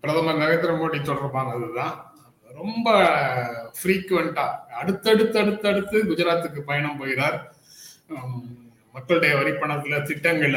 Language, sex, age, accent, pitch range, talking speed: Tamil, male, 30-49, native, 130-165 Hz, 75 wpm